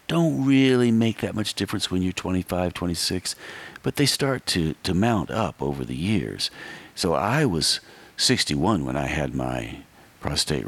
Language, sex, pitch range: English, male, 70-100 Hz